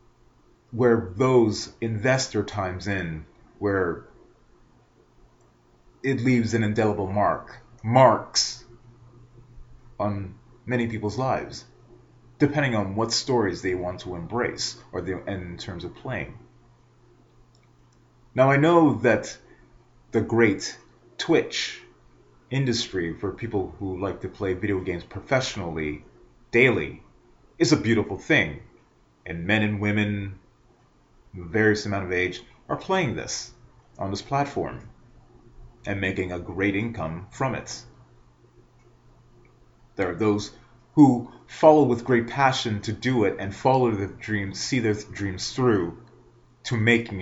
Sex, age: male, 30-49